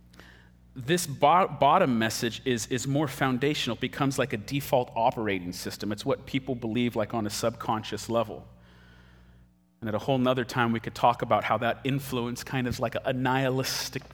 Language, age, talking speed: English, 30-49, 180 wpm